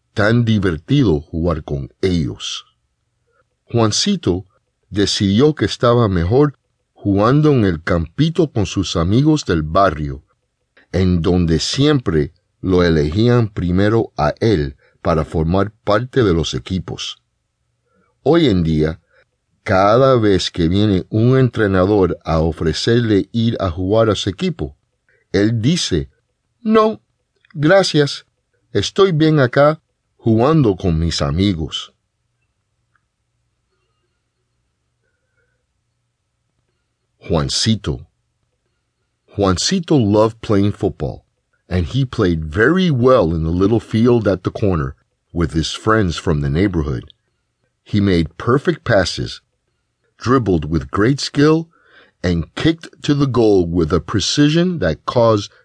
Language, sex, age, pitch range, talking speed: English, male, 50-69, 90-120 Hz, 110 wpm